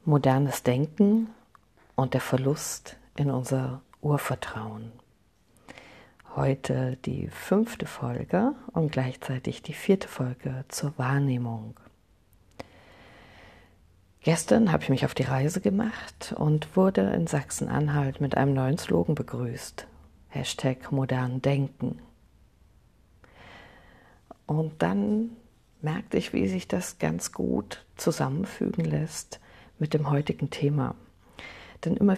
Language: German